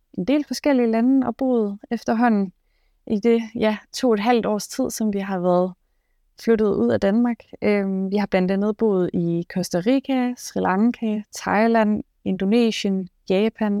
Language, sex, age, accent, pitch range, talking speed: Danish, female, 20-39, native, 185-225 Hz, 160 wpm